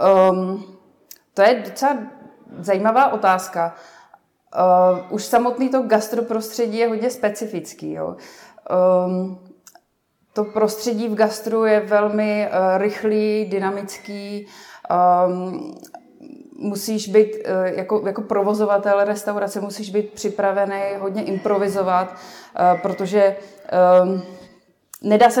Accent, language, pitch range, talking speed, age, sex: native, Czech, 180-210 Hz, 100 wpm, 20-39, female